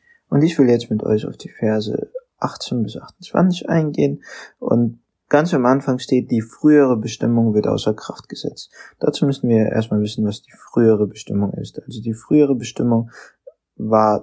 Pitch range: 105-130 Hz